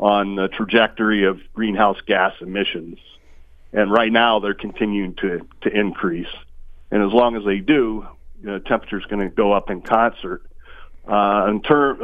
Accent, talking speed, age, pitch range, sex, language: American, 170 wpm, 50-69, 85-115 Hz, male, English